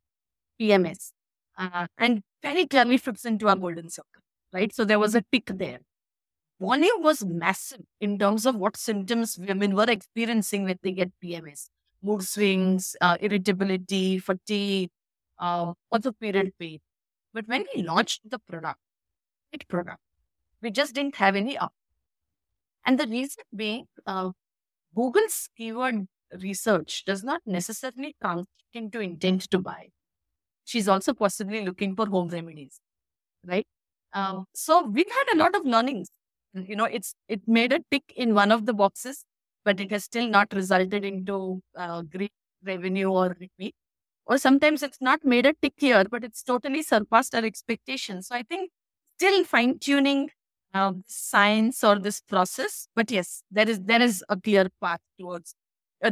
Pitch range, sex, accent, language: 185-240 Hz, female, Indian, English